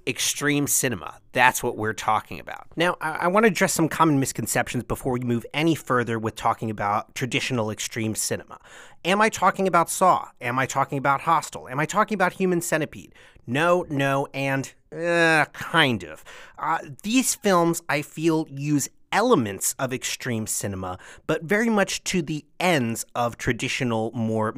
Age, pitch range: 30-49, 120-170 Hz